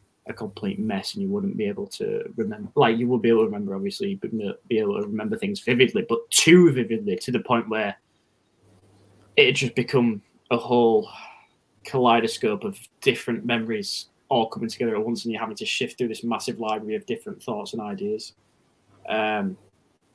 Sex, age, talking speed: male, 10-29, 180 wpm